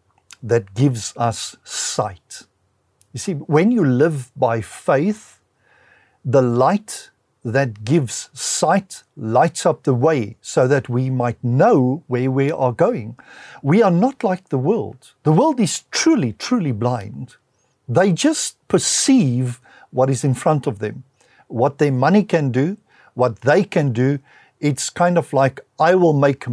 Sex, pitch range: male, 125-180 Hz